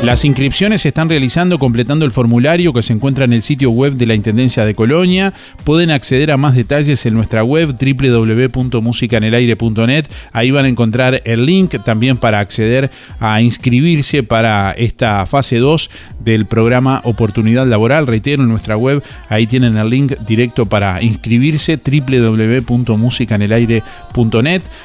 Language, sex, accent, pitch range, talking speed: Spanish, male, Argentinian, 115-140 Hz, 145 wpm